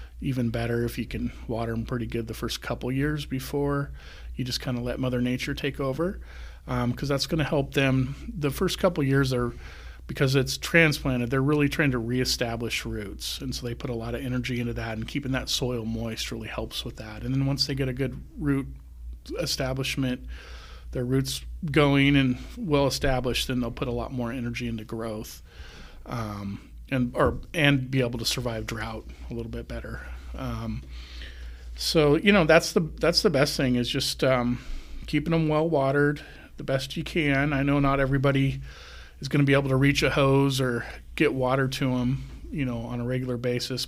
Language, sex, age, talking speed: English, male, 40-59, 200 wpm